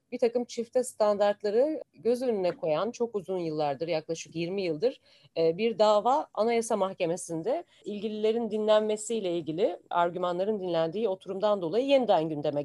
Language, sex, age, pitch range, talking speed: Turkish, female, 40-59, 175-250 Hz, 125 wpm